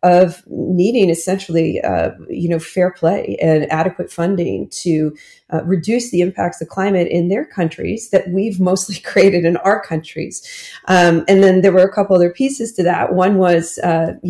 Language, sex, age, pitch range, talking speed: English, female, 40-59, 165-195 Hz, 175 wpm